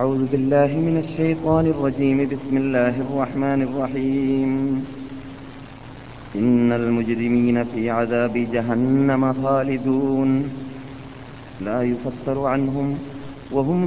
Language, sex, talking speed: Malayalam, male, 80 wpm